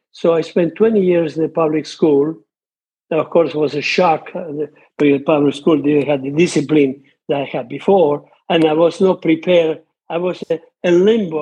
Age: 60-79